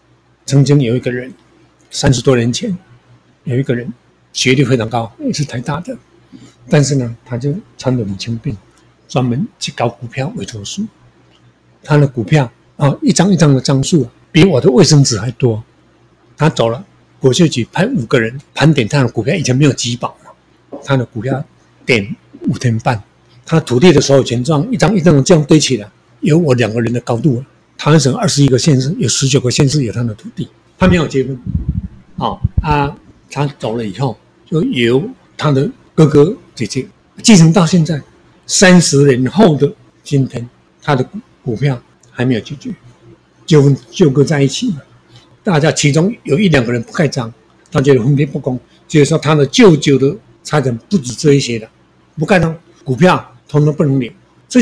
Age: 50-69